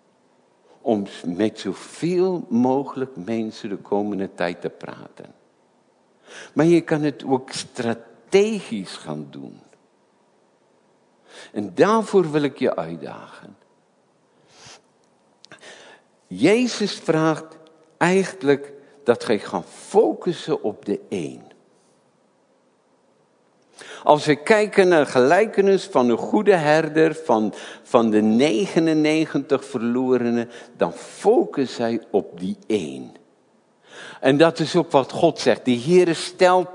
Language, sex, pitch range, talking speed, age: Dutch, male, 125-175 Hz, 105 wpm, 60-79